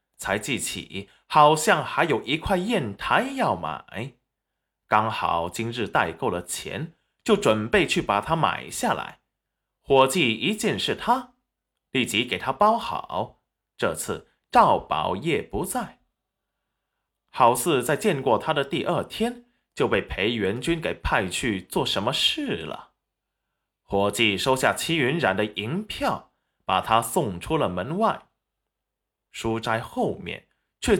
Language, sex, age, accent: Chinese, male, 20-39, native